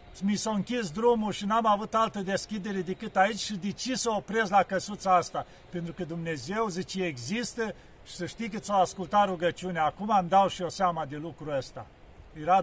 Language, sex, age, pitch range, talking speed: Romanian, male, 50-69, 170-215 Hz, 195 wpm